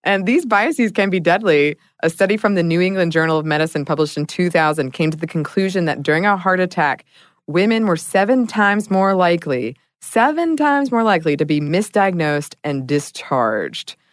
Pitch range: 150-195 Hz